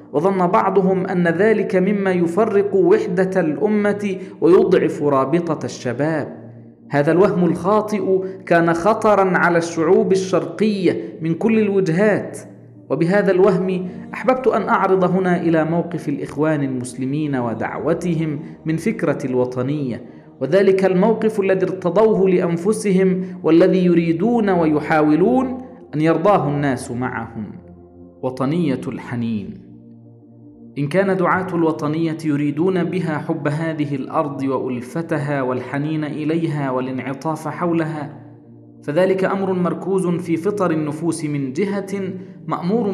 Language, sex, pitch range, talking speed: Arabic, male, 150-190 Hz, 100 wpm